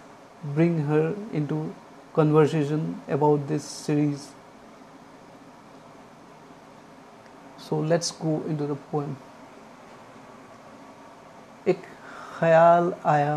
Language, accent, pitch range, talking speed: English, Indian, 145-160 Hz, 70 wpm